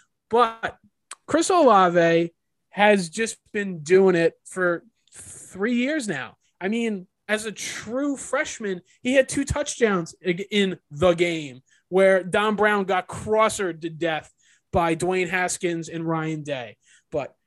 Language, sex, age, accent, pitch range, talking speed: English, male, 20-39, American, 165-215 Hz, 135 wpm